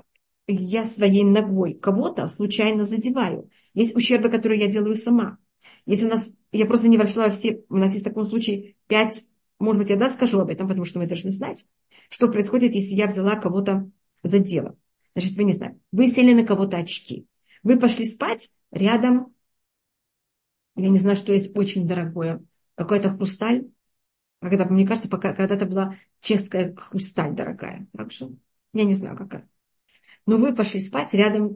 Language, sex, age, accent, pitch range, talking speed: Russian, female, 40-59, native, 195-220 Hz, 165 wpm